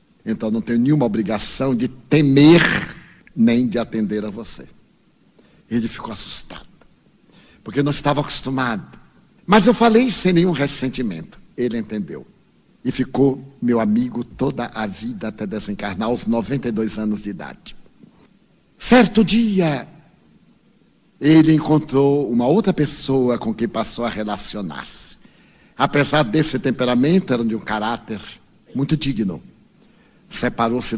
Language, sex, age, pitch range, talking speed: Portuguese, male, 60-79, 120-190 Hz, 120 wpm